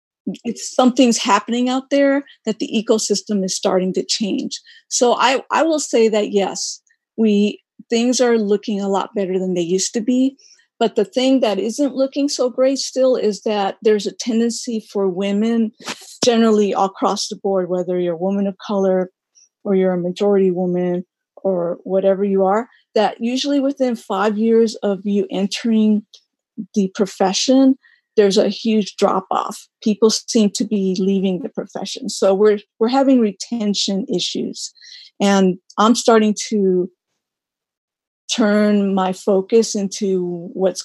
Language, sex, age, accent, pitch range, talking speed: English, female, 50-69, American, 195-235 Hz, 155 wpm